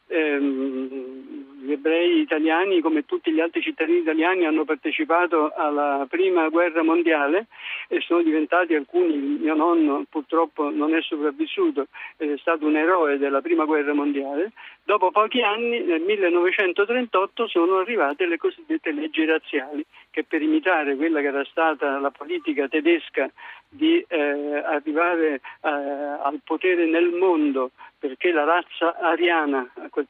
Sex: male